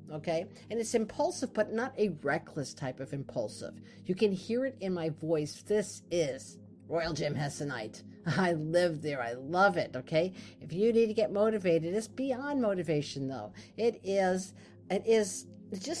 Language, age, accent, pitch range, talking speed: English, 50-69, American, 165-230 Hz, 170 wpm